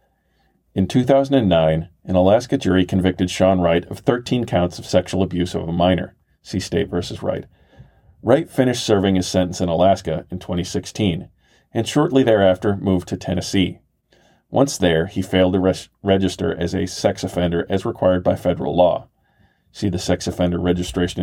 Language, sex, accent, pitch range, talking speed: English, male, American, 90-100 Hz, 160 wpm